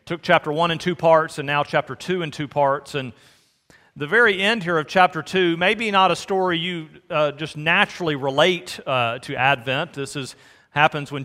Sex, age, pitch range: male, 40-59, 135-170 Hz